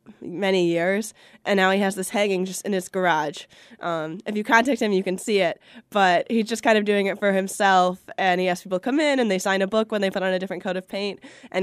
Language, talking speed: English, 265 wpm